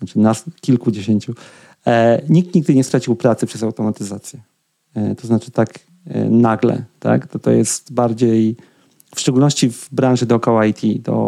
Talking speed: 150 wpm